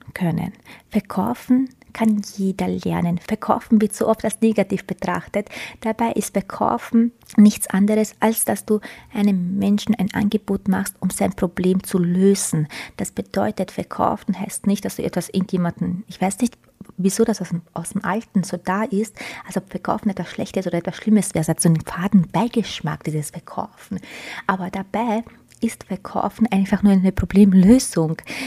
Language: German